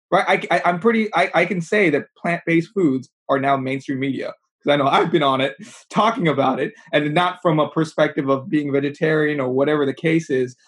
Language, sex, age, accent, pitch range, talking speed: English, male, 20-39, American, 135-175 Hz, 225 wpm